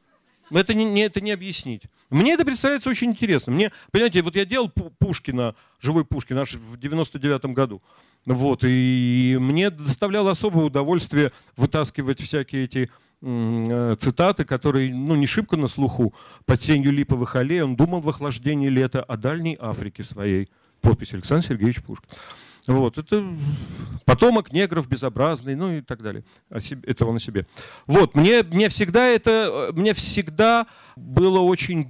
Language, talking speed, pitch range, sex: Russian, 145 wpm, 130-185 Hz, male